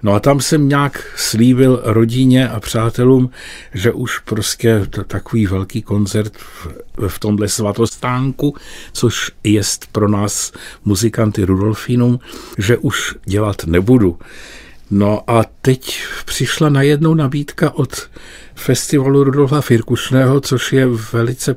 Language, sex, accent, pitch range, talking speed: Czech, male, native, 110-135 Hz, 115 wpm